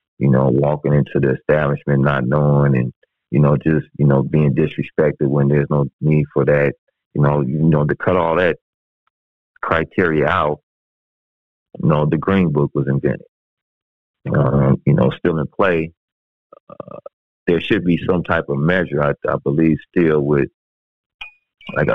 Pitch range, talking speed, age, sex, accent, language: 70-85 Hz, 160 wpm, 30-49, male, American, English